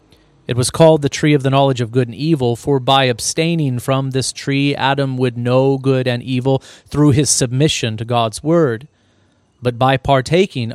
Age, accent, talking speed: 30-49, American, 185 wpm